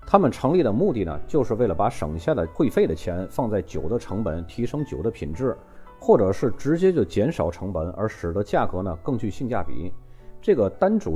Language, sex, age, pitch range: Chinese, male, 30-49, 90-130 Hz